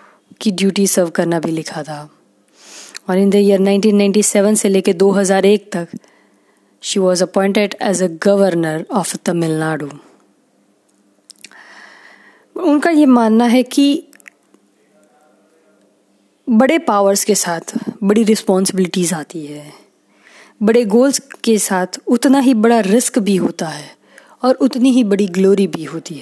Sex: female